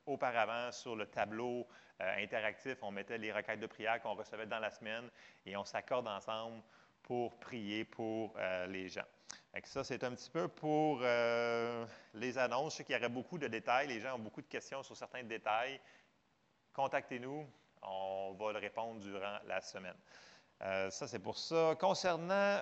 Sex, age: male, 30-49